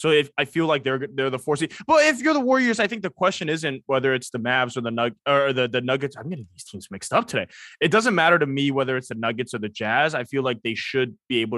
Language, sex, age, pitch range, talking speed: English, male, 20-39, 120-160 Hz, 295 wpm